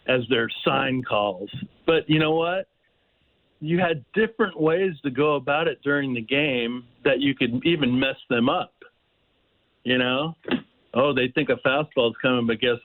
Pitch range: 120-150 Hz